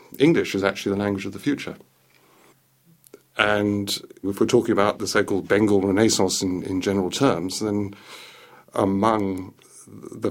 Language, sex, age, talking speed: English, male, 50-69, 140 wpm